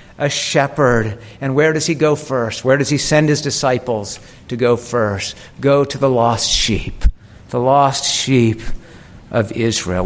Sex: male